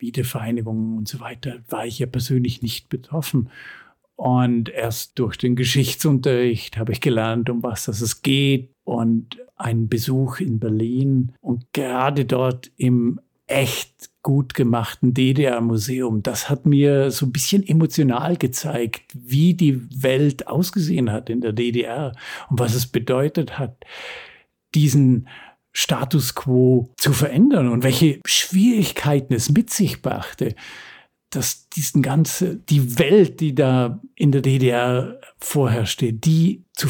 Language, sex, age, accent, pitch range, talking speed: German, male, 50-69, German, 125-160 Hz, 130 wpm